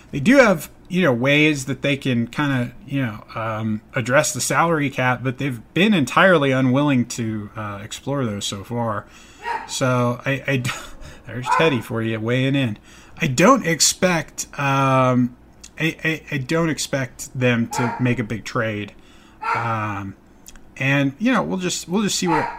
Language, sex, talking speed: English, male, 165 wpm